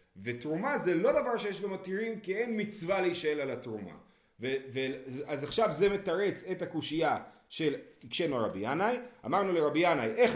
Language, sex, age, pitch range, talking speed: Hebrew, male, 40-59, 140-190 Hz, 160 wpm